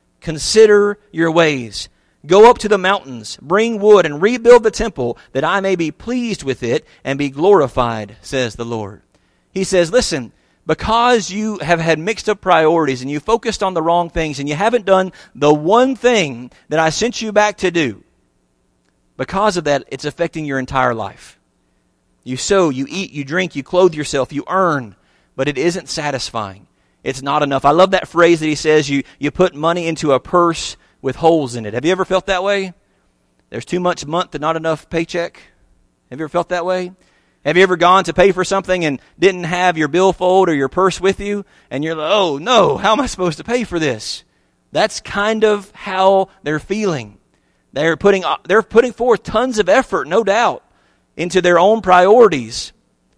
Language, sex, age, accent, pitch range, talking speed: English, male, 40-59, American, 135-190 Hz, 195 wpm